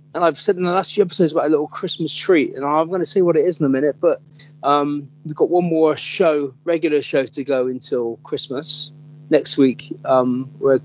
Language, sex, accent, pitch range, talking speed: English, male, British, 130-150 Hz, 225 wpm